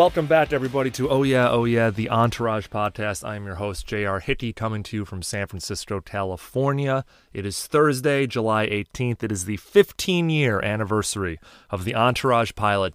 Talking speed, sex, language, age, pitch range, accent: 175 wpm, male, English, 30-49, 105-130 Hz, American